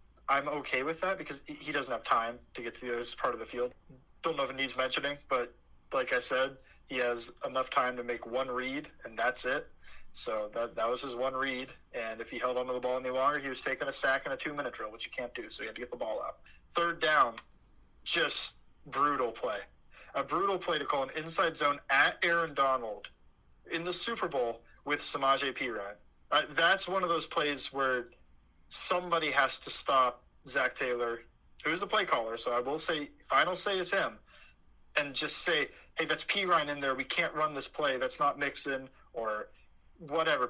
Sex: male